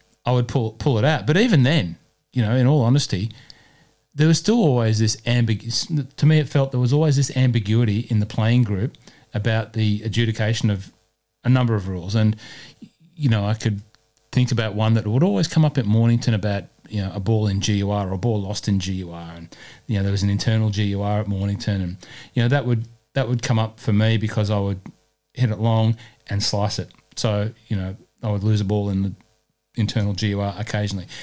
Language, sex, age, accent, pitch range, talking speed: English, male, 30-49, Australian, 105-130 Hz, 215 wpm